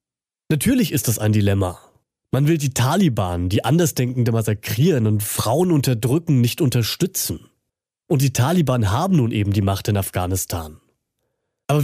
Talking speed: 140 wpm